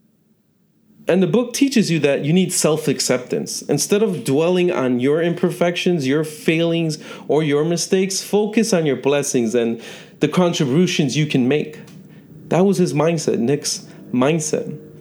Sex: male